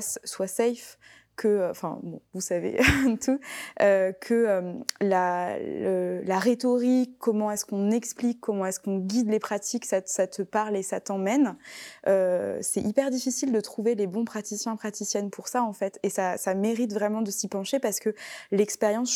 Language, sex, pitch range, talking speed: French, female, 195-230 Hz, 180 wpm